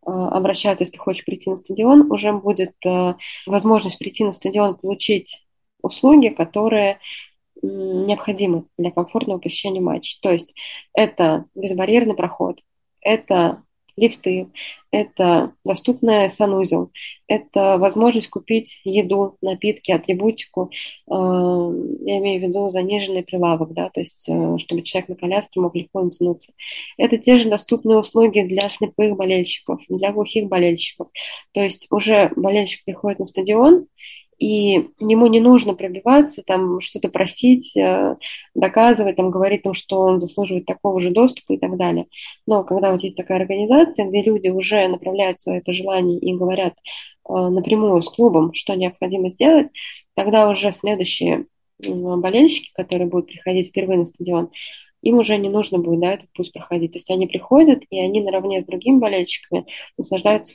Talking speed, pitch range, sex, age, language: 140 wpm, 180-215 Hz, female, 20-39, Russian